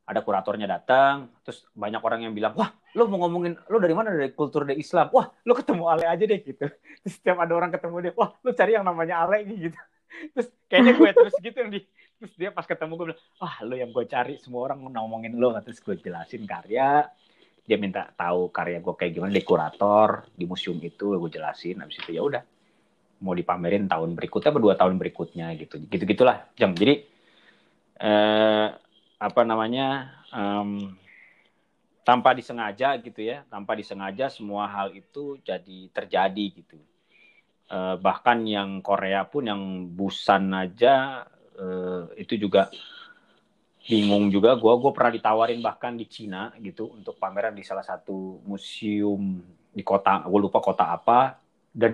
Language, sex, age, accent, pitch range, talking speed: Indonesian, male, 30-49, native, 100-165 Hz, 165 wpm